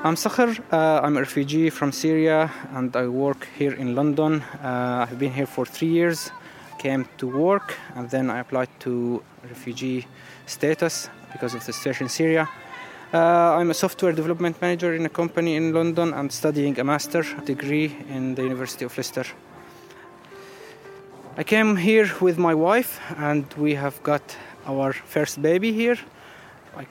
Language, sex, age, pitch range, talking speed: English, male, 20-39, 130-160 Hz, 165 wpm